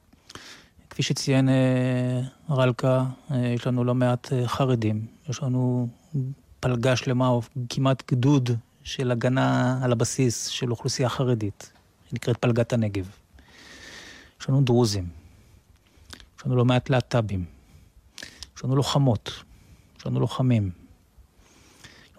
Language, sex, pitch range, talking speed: Hebrew, male, 110-140 Hz, 110 wpm